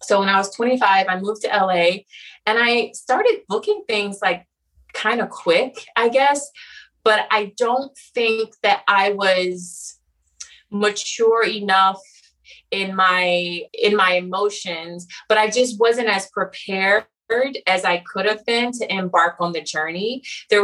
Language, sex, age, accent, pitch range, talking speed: English, female, 20-39, American, 185-235 Hz, 150 wpm